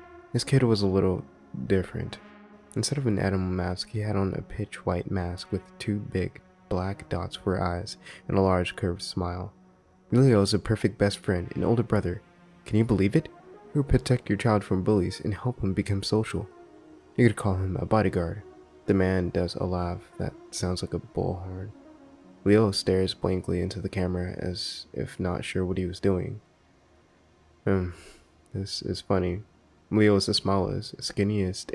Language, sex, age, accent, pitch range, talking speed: English, male, 20-39, American, 95-115 Hz, 175 wpm